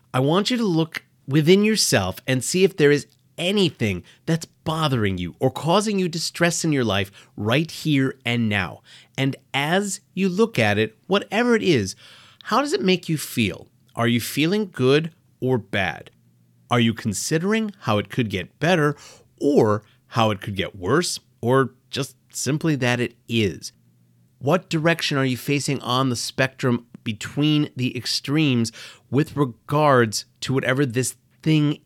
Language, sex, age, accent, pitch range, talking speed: English, male, 30-49, American, 110-155 Hz, 160 wpm